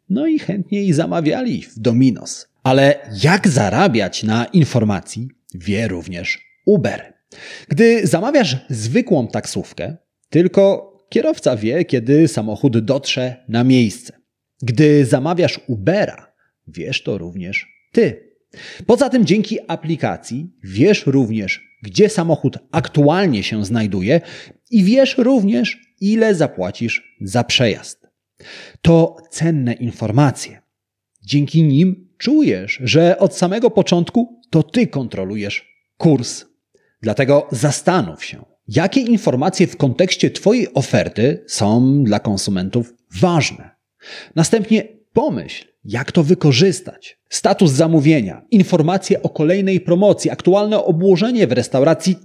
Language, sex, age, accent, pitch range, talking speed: Polish, male, 30-49, native, 125-190 Hz, 105 wpm